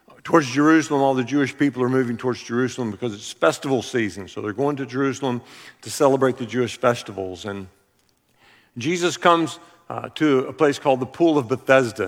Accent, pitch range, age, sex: American, 120-145 Hz, 50-69, male